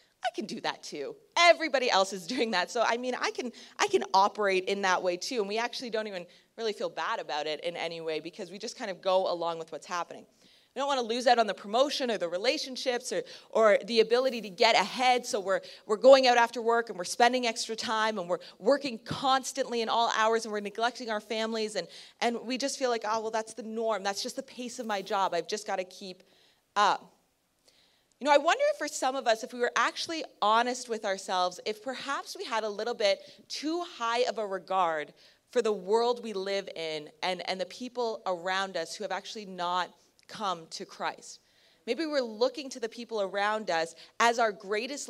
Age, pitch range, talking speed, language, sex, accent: 30-49, 190-245 Hz, 225 wpm, English, female, American